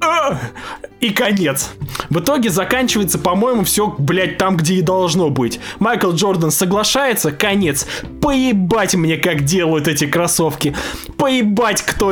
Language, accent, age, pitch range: Russian, native, 20-39, 160-210 Hz